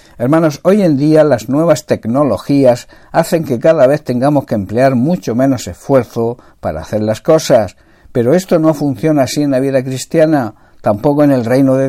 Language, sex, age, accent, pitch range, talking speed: Spanish, male, 60-79, Spanish, 115-150 Hz, 175 wpm